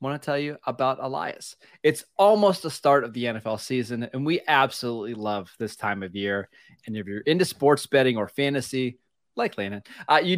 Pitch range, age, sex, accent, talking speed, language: 120-145 Hz, 20-39, male, American, 190 wpm, English